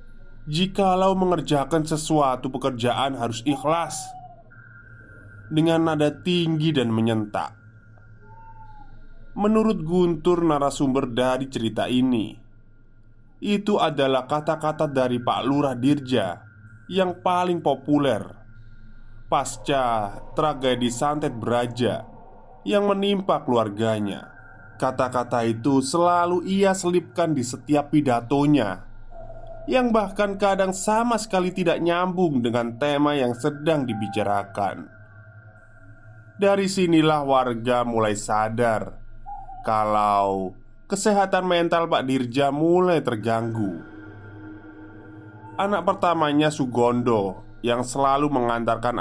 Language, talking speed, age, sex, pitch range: Indonesian, 90 wpm, 20-39, male, 110-165 Hz